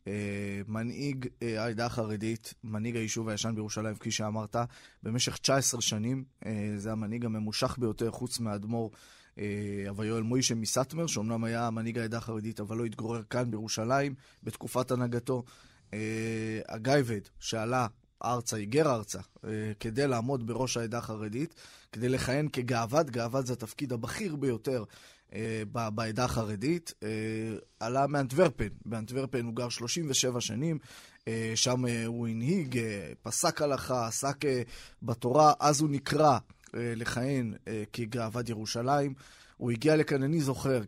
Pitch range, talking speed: 110-135 Hz, 135 wpm